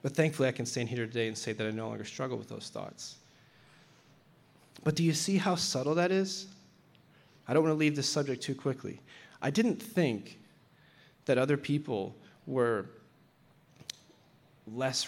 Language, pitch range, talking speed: English, 120-155 Hz, 165 wpm